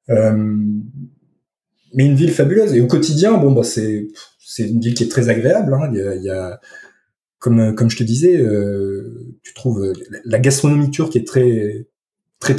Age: 20-39